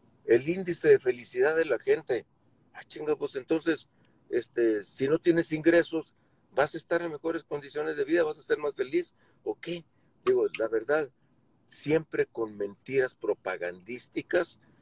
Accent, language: Mexican, Spanish